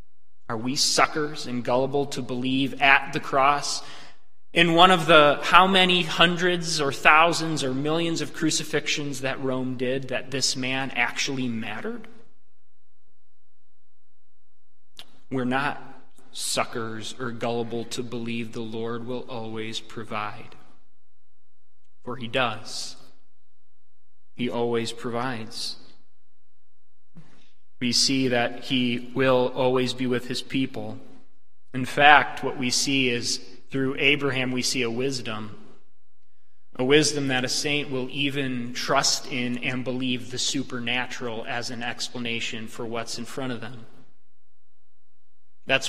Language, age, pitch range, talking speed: English, 20-39, 115-135 Hz, 125 wpm